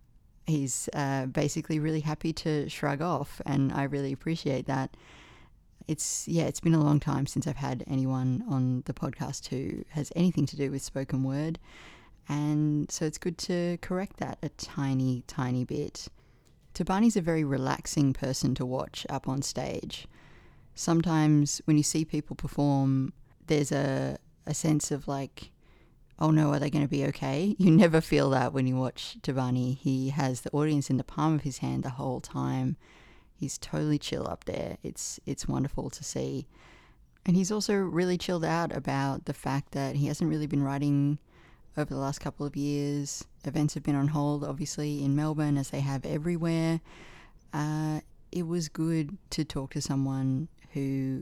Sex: female